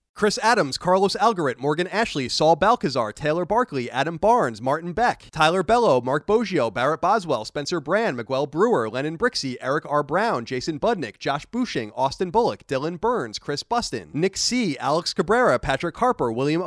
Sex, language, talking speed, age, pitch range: male, English, 165 wpm, 30-49, 140-230 Hz